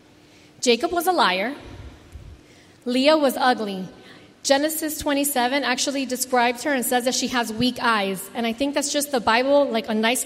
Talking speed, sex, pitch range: 170 wpm, female, 230-280 Hz